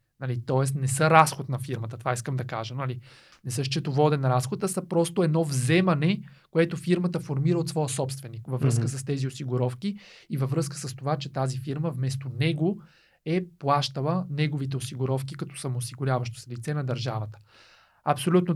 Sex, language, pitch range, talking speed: male, Bulgarian, 130-165 Hz, 170 wpm